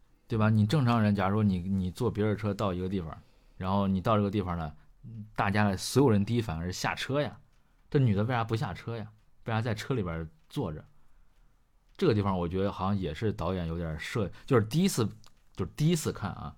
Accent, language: native, Chinese